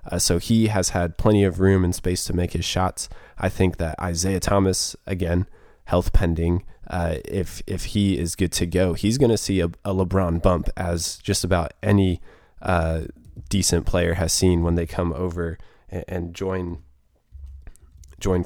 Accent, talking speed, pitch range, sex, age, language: American, 180 wpm, 85-95 Hz, male, 20-39, English